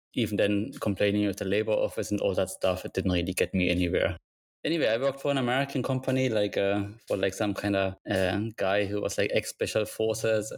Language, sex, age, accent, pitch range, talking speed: English, male, 20-39, German, 100-125 Hz, 220 wpm